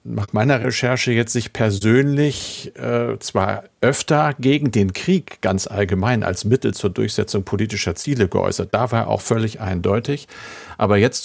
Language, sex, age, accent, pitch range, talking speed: German, male, 50-69, German, 100-125 Hz, 155 wpm